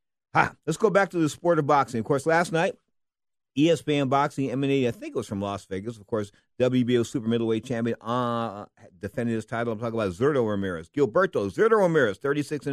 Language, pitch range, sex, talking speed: English, 110-135 Hz, male, 200 wpm